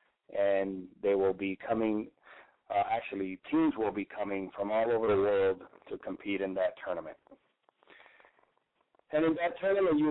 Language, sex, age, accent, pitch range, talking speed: English, male, 30-49, American, 100-135 Hz, 155 wpm